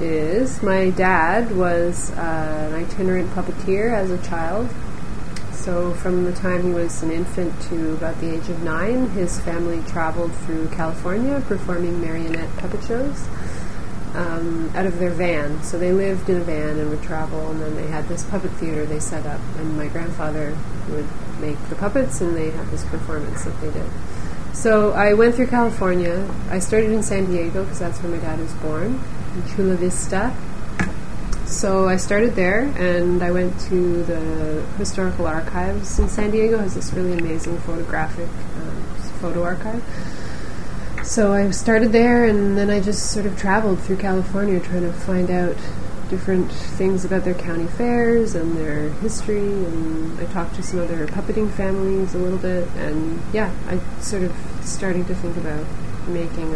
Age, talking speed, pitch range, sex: 30-49, 170 wpm, 165-195 Hz, female